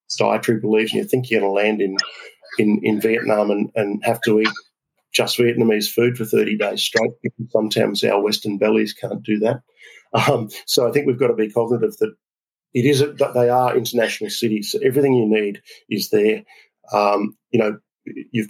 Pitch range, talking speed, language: 105-120 Hz, 190 wpm, English